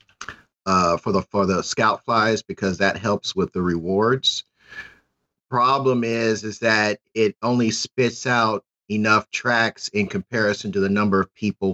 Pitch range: 95-115 Hz